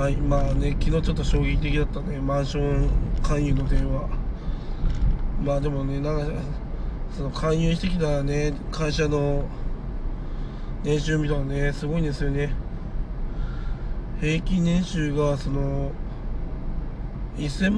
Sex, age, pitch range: male, 20-39, 140-155 Hz